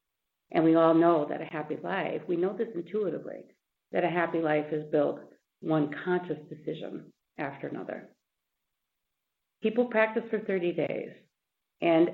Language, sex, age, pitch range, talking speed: English, female, 50-69, 155-190 Hz, 145 wpm